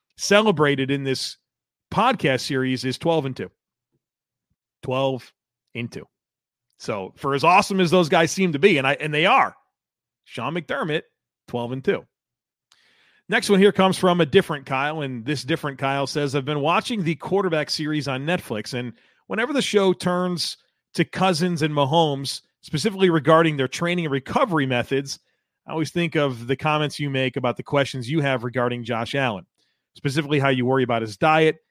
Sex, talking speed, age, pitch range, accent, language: male, 170 wpm, 40-59, 130-165 Hz, American, English